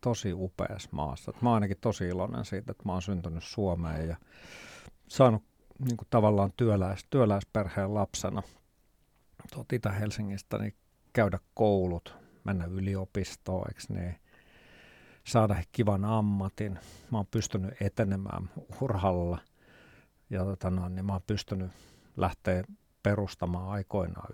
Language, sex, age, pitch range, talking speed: Finnish, male, 50-69, 95-110 Hz, 110 wpm